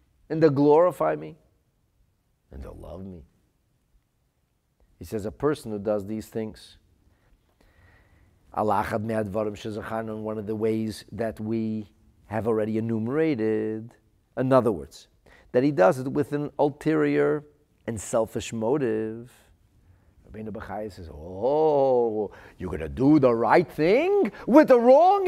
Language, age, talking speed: English, 40-59, 130 wpm